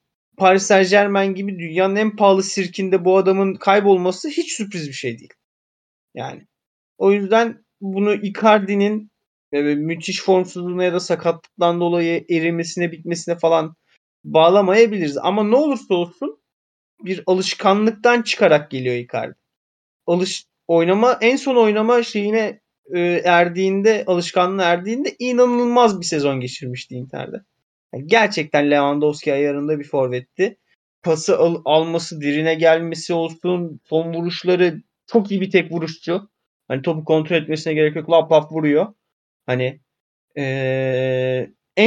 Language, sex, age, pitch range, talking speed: Turkish, male, 30-49, 150-195 Hz, 120 wpm